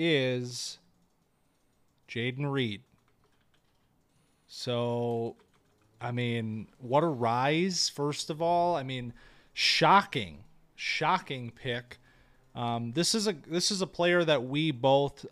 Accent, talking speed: American, 110 wpm